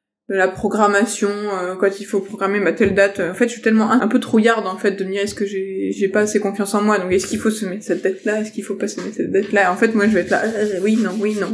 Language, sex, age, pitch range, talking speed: French, female, 20-39, 190-220 Hz, 335 wpm